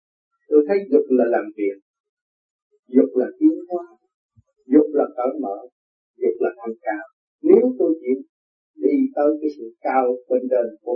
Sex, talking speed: male, 160 wpm